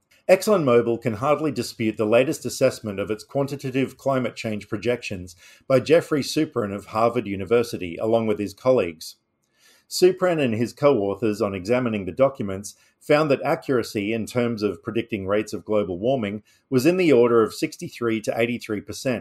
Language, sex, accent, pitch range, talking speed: English, male, Australian, 105-135 Hz, 150 wpm